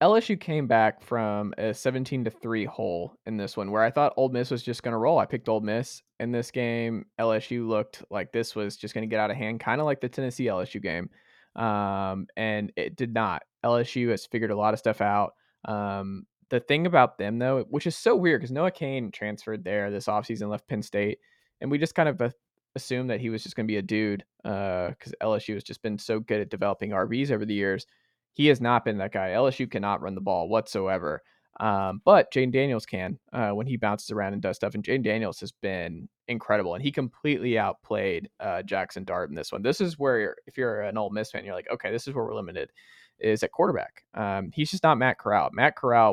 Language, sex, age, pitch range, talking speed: English, male, 20-39, 105-125 Hz, 235 wpm